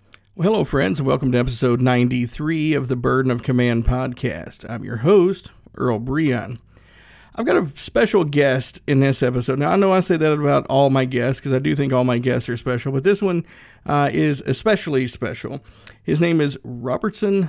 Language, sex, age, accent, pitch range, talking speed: English, male, 50-69, American, 125-155 Hz, 195 wpm